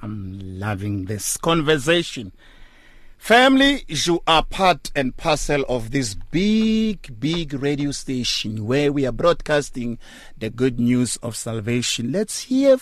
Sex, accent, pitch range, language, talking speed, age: male, Nigerian, 120-170 Hz, English, 125 wpm, 50-69